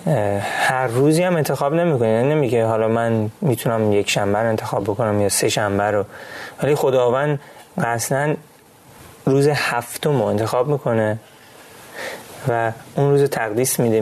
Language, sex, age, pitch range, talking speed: Persian, male, 30-49, 110-140 Hz, 130 wpm